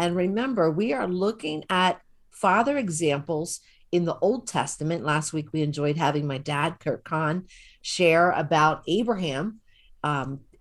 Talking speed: 140 wpm